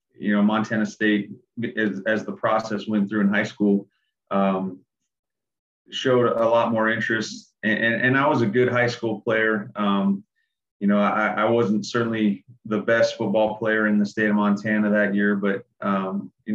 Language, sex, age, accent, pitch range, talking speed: English, male, 30-49, American, 100-110 Hz, 180 wpm